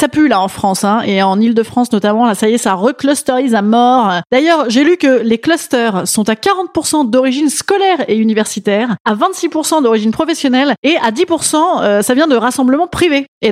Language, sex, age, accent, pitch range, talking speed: French, female, 30-49, French, 210-290 Hz, 200 wpm